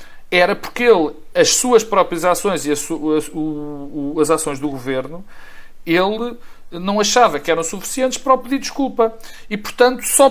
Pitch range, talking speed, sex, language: 130-185 Hz, 145 wpm, male, Portuguese